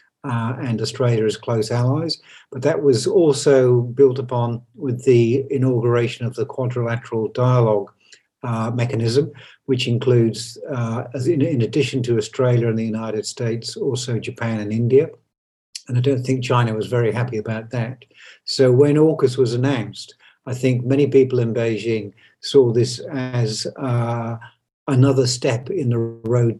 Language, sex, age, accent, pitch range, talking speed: English, male, 60-79, British, 115-135 Hz, 150 wpm